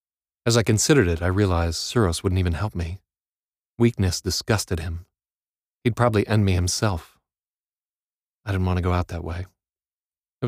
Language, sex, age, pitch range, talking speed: English, male, 40-59, 85-105 Hz, 160 wpm